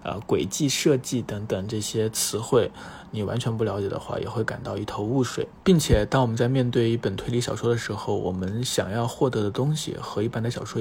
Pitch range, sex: 105-125 Hz, male